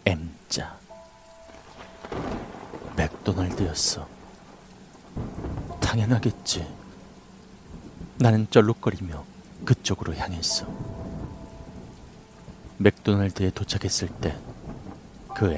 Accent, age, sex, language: native, 30-49, male, Korean